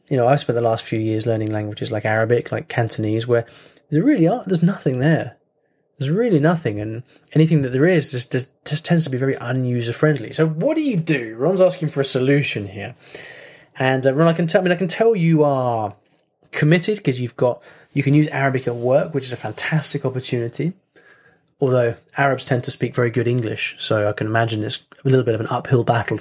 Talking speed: 220 wpm